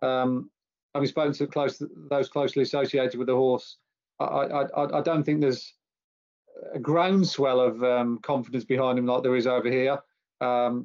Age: 30-49